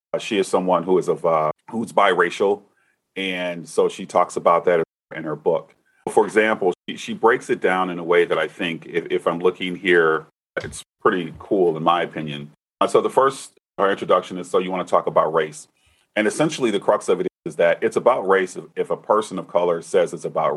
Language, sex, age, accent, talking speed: English, male, 40-59, American, 220 wpm